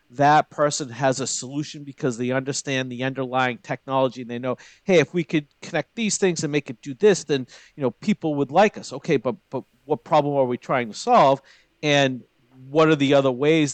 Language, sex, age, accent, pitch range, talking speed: English, male, 50-69, American, 125-160 Hz, 215 wpm